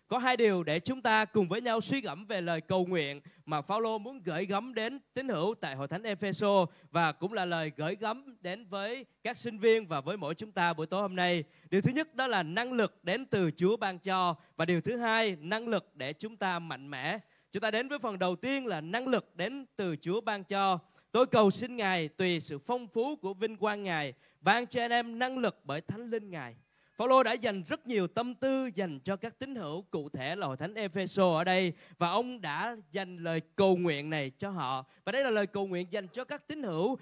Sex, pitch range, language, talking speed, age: male, 170-235 Hz, Vietnamese, 245 wpm, 20-39